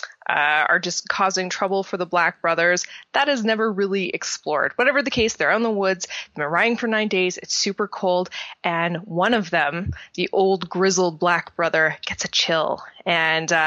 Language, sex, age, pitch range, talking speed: English, female, 20-39, 175-215 Hz, 190 wpm